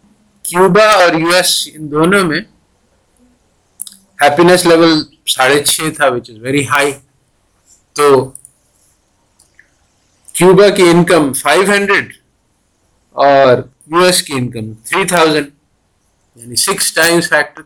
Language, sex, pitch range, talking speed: Urdu, male, 110-155 Hz, 100 wpm